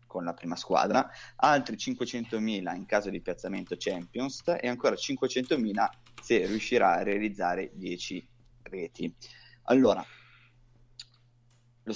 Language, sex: Italian, male